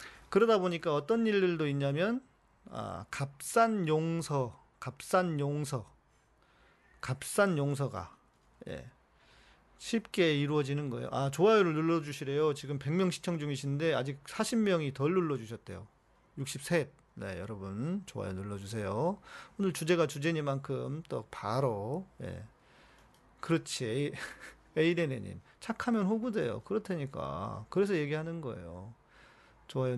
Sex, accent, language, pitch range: male, native, Korean, 130-170 Hz